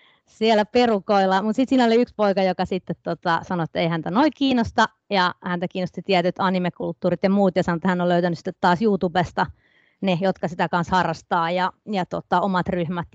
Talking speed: 185 wpm